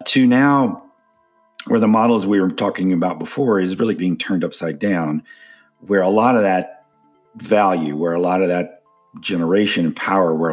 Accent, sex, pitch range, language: American, male, 85-110 Hz, English